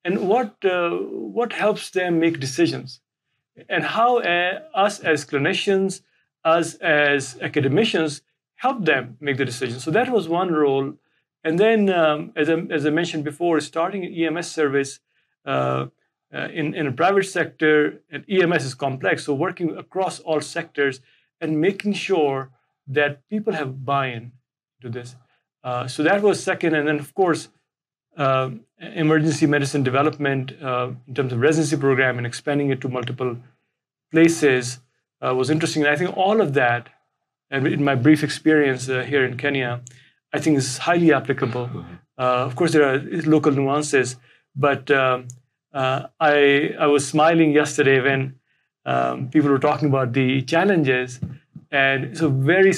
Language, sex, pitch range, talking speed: English, male, 130-165 Hz, 155 wpm